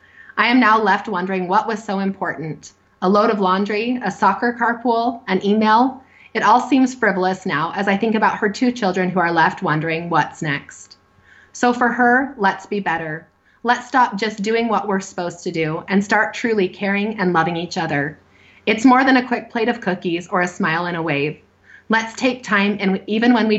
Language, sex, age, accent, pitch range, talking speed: English, female, 30-49, American, 170-220 Hz, 205 wpm